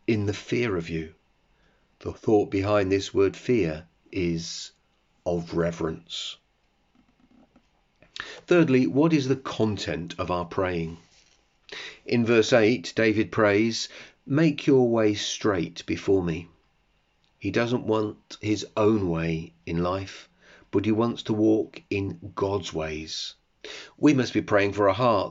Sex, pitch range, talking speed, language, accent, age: male, 85-110 Hz, 135 wpm, English, British, 40-59